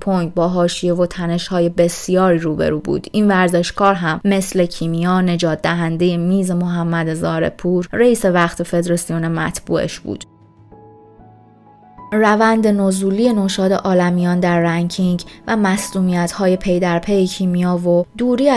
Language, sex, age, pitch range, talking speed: Persian, female, 20-39, 170-195 Hz, 120 wpm